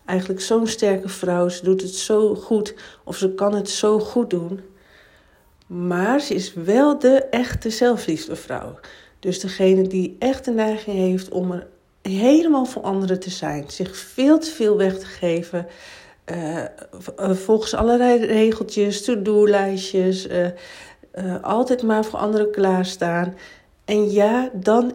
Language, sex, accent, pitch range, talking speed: Dutch, female, Dutch, 180-220 Hz, 140 wpm